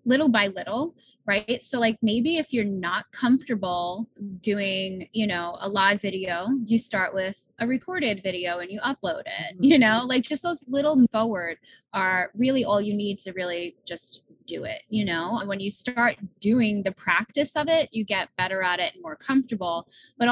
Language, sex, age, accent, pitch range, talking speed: English, female, 20-39, American, 190-240 Hz, 190 wpm